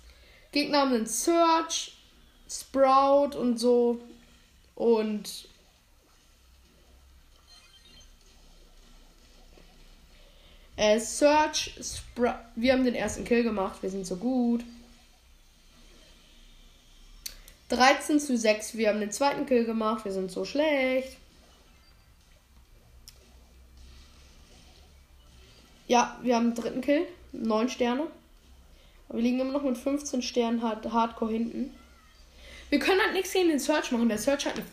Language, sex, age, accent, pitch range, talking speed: German, female, 20-39, German, 205-275 Hz, 110 wpm